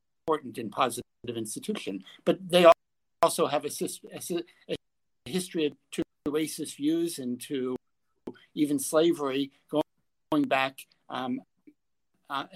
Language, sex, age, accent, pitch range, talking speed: English, male, 60-79, American, 145-185 Hz, 105 wpm